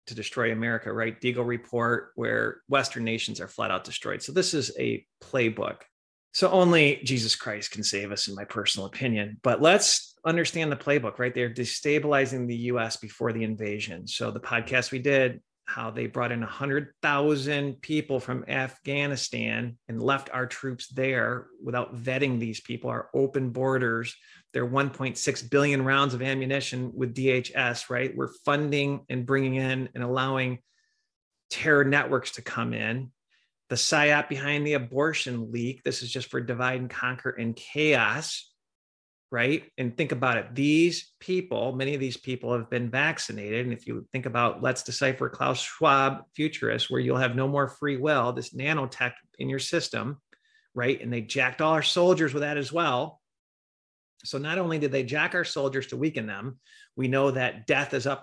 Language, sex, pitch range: English, male, 120-140 Hz